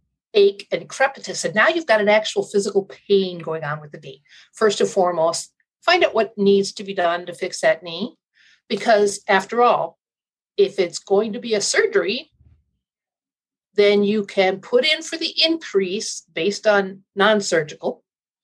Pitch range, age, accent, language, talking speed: 180-240 Hz, 50-69, American, English, 165 wpm